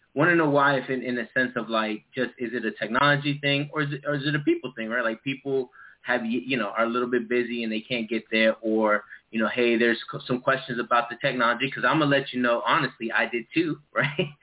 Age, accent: 20-39, American